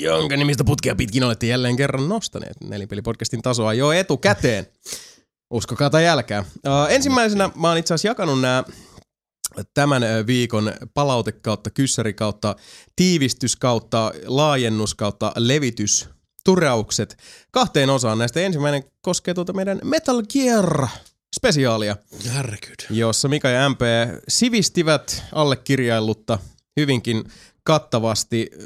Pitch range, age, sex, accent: 110-145 Hz, 30-49, male, native